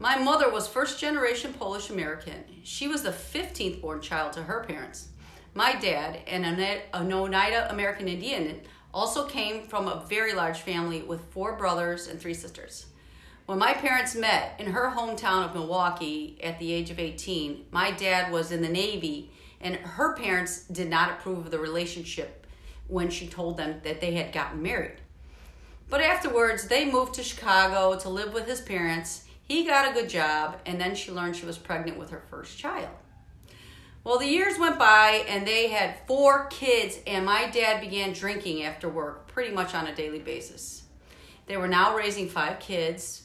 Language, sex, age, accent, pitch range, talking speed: English, female, 40-59, American, 160-210 Hz, 180 wpm